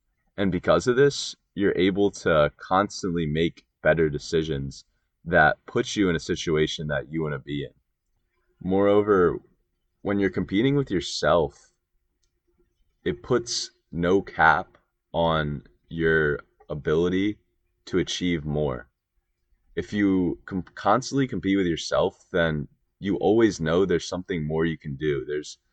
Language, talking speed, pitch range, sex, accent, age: English, 130 wpm, 75-95 Hz, male, American, 20-39